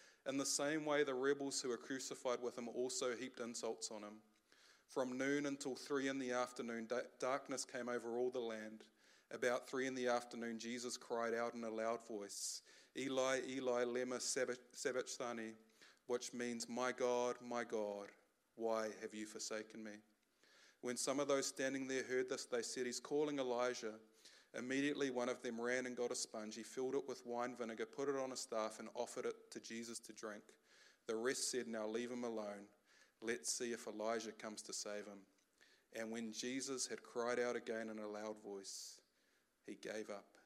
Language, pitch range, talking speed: English, 110-125 Hz, 185 wpm